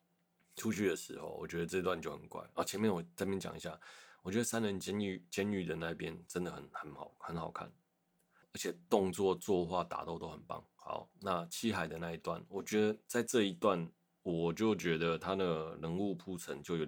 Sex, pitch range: male, 85-105 Hz